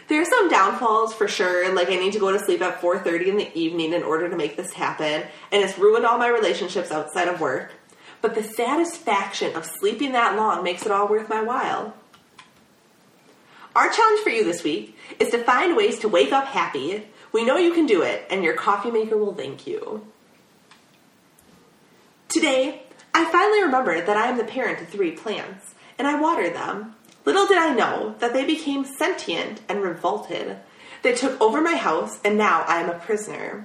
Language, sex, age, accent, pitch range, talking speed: English, female, 30-49, American, 200-335 Hz, 195 wpm